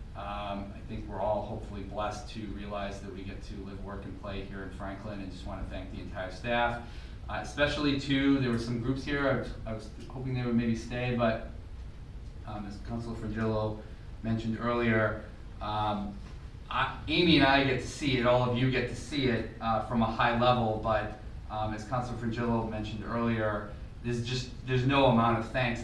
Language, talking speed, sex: English, 200 wpm, male